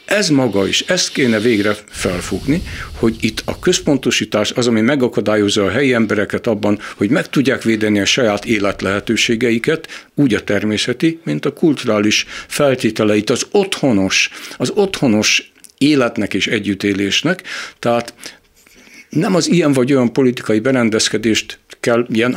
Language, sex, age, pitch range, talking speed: Hungarian, male, 60-79, 105-130 Hz, 130 wpm